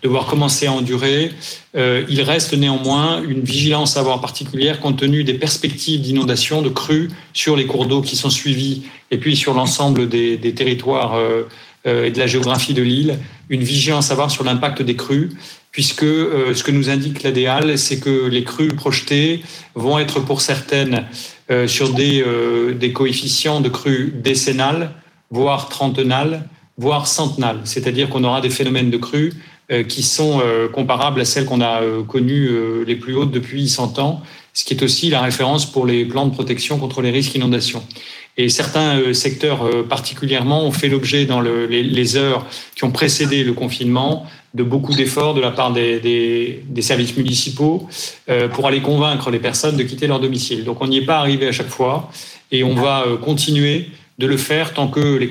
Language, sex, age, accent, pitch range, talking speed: French, male, 40-59, French, 125-145 Hz, 185 wpm